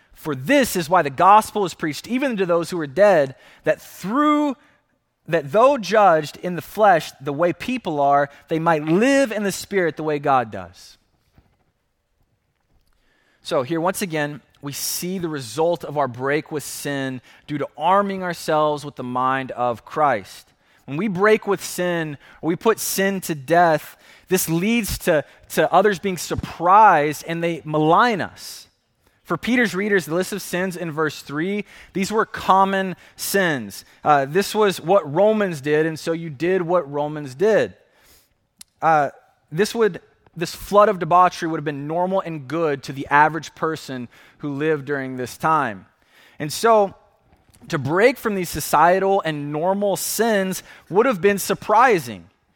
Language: English